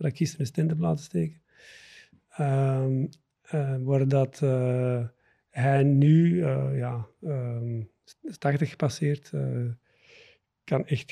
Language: Dutch